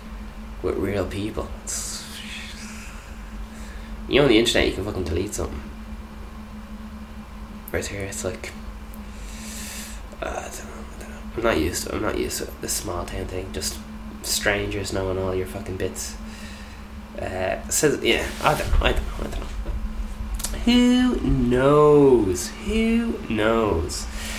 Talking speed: 150 wpm